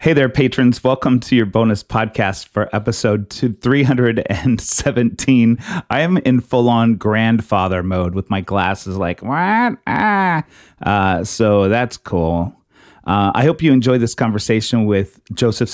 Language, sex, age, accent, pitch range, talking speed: English, male, 30-49, American, 100-140 Hz, 140 wpm